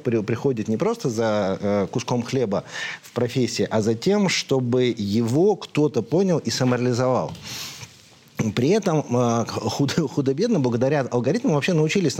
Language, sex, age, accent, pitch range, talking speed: Russian, male, 50-69, native, 120-165 Hz, 130 wpm